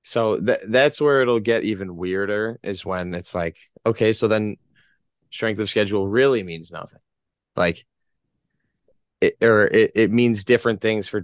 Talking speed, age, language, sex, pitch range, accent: 160 wpm, 20-39, English, male, 85-110 Hz, American